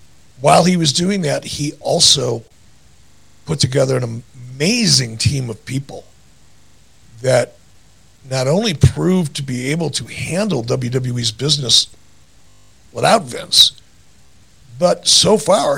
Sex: male